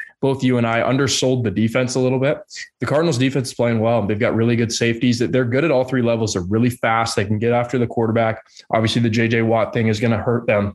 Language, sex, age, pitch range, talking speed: English, male, 20-39, 110-130 Hz, 260 wpm